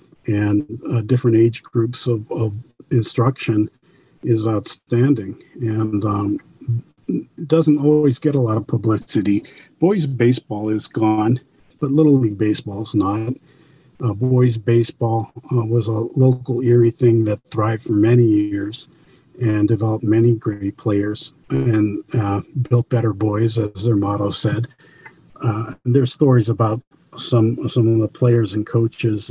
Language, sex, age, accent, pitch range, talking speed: English, male, 50-69, American, 110-130 Hz, 140 wpm